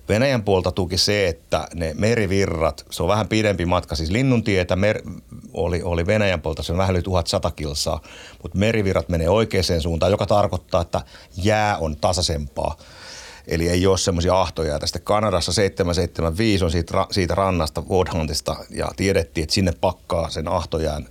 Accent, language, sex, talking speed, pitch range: native, Finnish, male, 155 wpm, 80-95 Hz